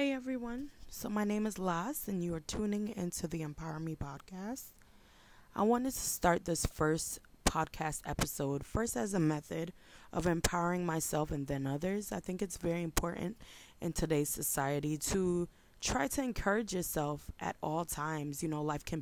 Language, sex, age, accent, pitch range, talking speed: English, female, 20-39, American, 150-200 Hz, 170 wpm